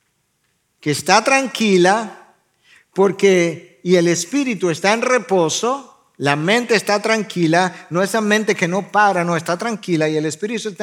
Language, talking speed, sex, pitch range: Spanish, 155 wpm, male, 175-220 Hz